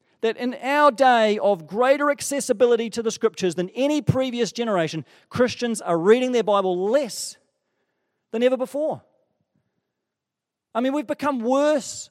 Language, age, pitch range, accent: English, 40-59, 195-250 Hz, Australian